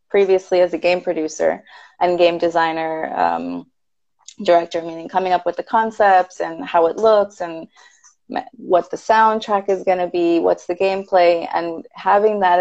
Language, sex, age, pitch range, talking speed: English, female, 20-39, 170-200 Hz, 160 wpm